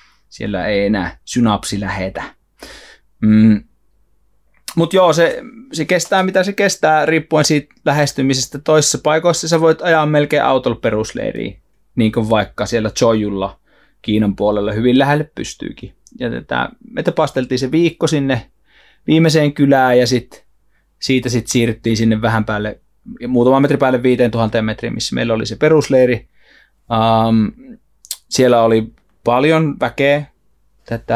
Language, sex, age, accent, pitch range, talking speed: Finnish, male, 30-49, native, 110-145 Hz, 130 wpm